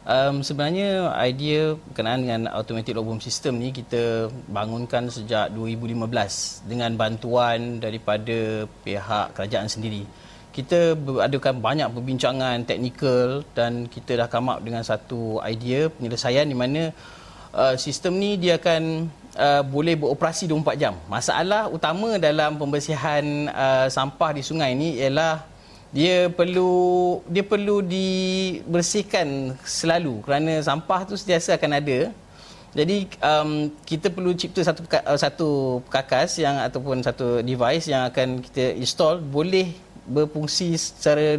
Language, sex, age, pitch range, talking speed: Malay, male, 30-49, 120-165 Hz, 125 wpm